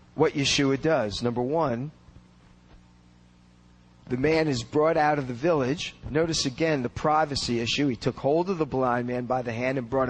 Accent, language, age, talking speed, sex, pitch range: American, English, 40-59, 180 wpm, male, 115-155 Hz